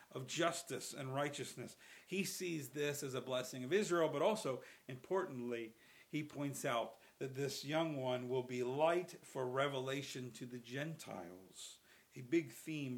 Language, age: English, 50-69